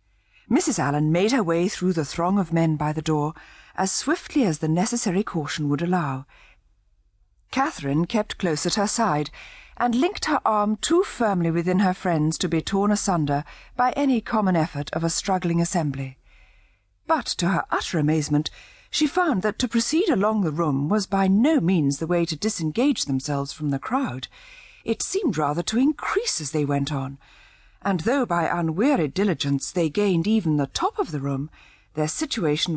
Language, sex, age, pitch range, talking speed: English, female, 50-69, 145-210 Hz, 180 wpm